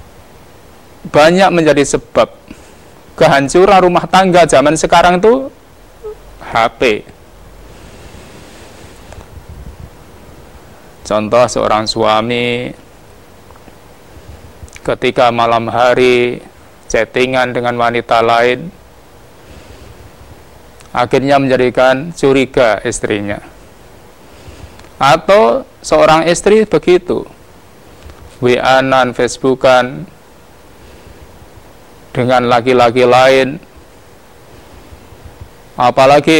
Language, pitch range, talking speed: Indonesian, 105-150 Hz, 55 wpm